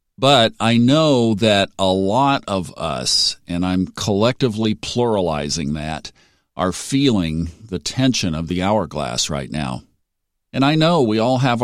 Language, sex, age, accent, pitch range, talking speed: English, male, 50-69, American, 95-125 Hz, 145 wpm